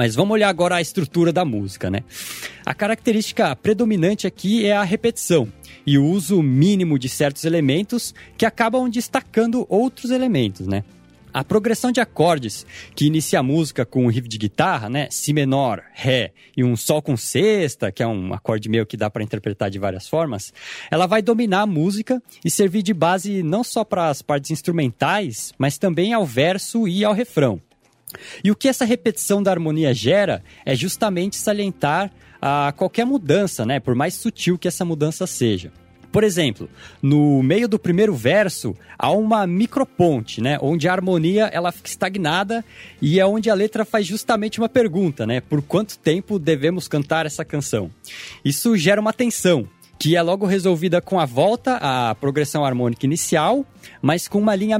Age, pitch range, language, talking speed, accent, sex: 20-39, 135-205 Hz, Portuguese, 175 wpm, Brazilian, male